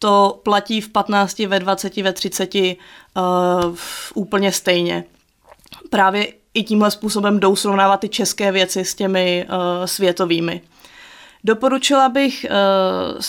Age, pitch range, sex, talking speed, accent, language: 30-49, 195-230 Hz, female, 115 wpm, native, Czech